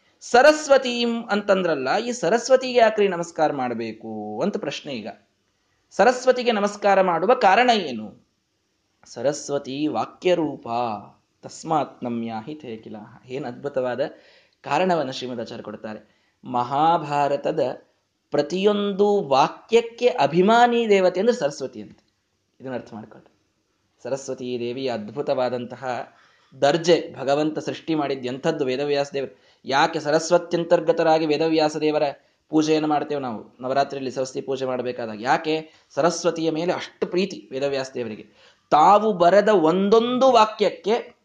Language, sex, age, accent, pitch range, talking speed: Kannada, male, 20-39, native, 130-200 Hz, 85 wpm